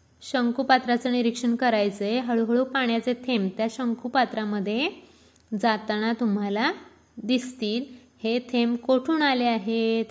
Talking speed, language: 100 wpm, Marathi